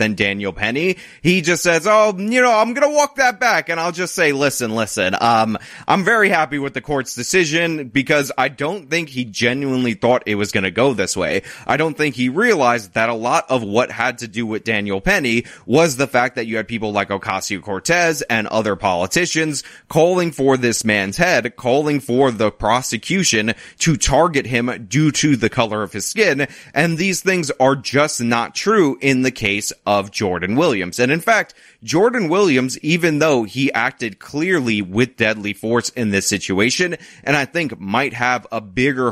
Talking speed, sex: 195 wpm, male